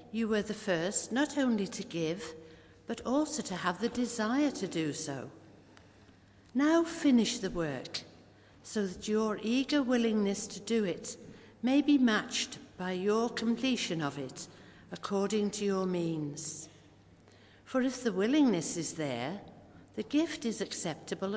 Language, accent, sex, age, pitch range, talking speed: English, British, female, 60-79, 150-225 Hz, 145 wpm